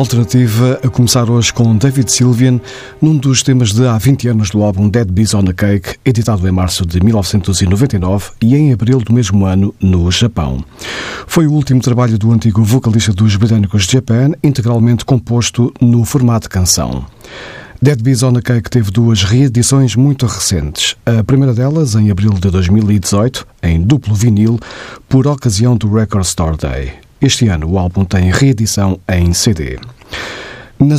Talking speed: 165 wpm